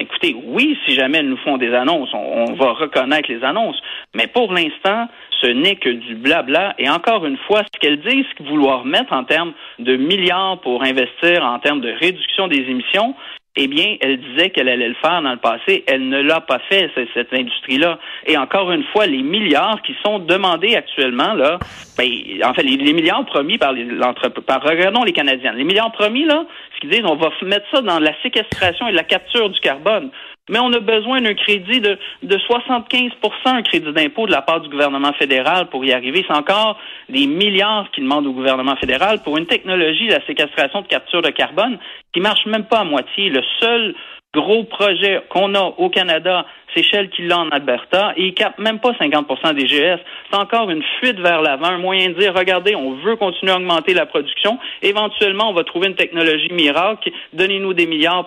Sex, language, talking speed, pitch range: male, French, 210 wpm, 155-230 Hz